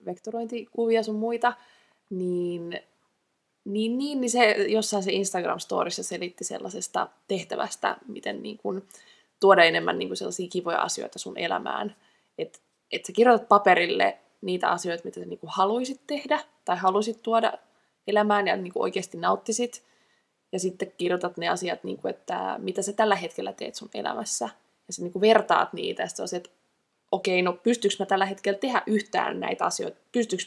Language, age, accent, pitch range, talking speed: Finnish, 20-39, native, 180-220 Hz, 160 wpm